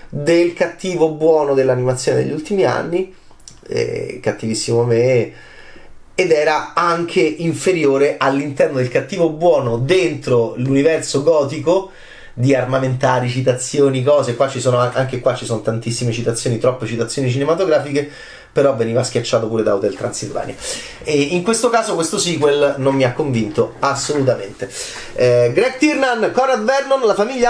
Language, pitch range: Italian, 125-170 Hz